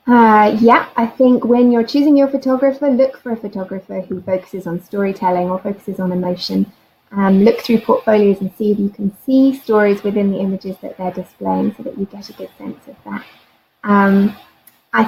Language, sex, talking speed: English, female, 195 wpm